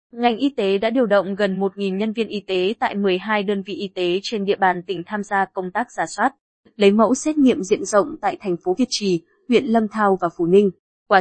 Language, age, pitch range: Vietnamese, 20-39, 195-240 Hz